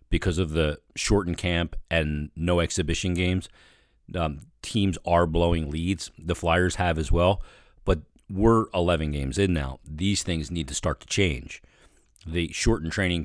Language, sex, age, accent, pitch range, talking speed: English, male, 40-59, American, 80-100 Hz, 160 wpm